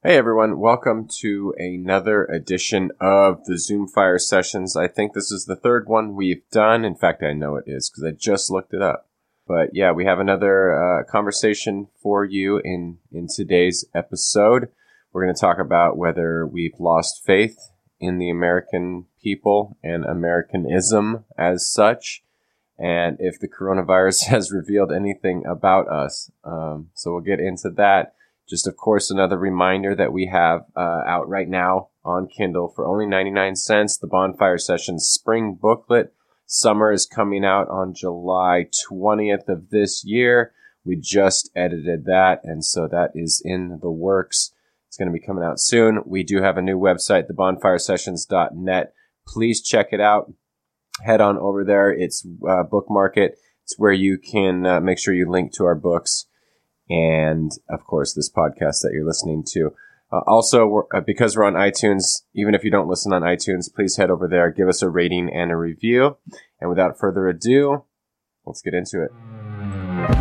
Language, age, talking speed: English, 20-39, 170 wpm